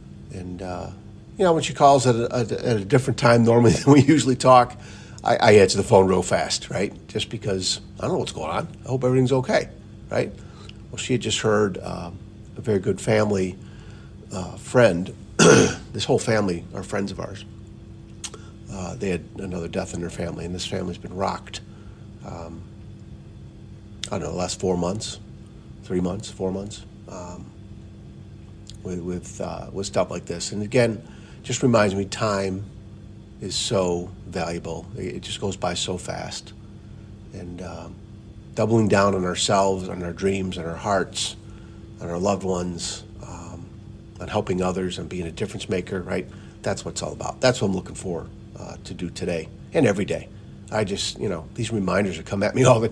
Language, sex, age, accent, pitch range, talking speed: English, male, 50-69, American, 90-110 Hz, 180 wpm